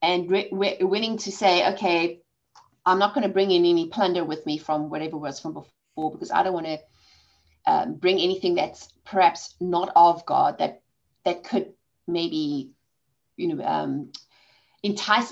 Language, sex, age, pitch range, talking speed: English, female, 30-49, 170-235 Hz, 170 wpm